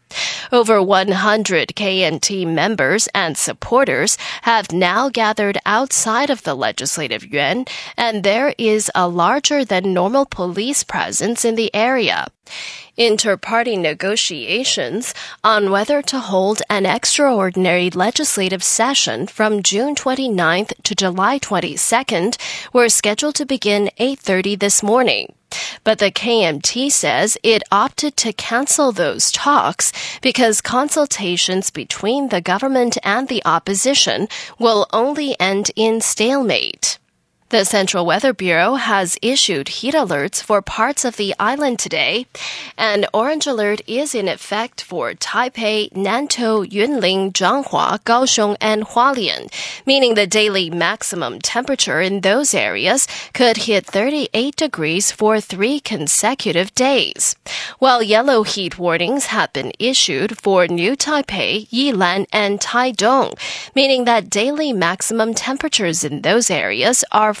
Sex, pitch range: female, 195-255 Hz